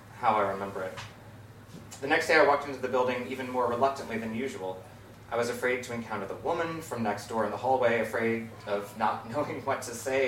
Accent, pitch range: American, 110-130 Hz